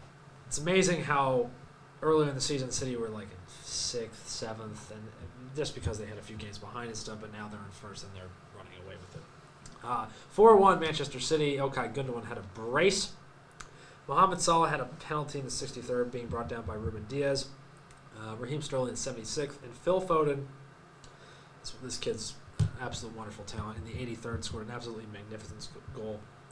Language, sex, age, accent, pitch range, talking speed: English, male, 20-39, American, 115-150 Hz, 175 wpm